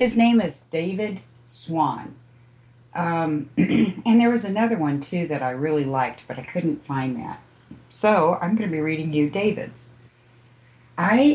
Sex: female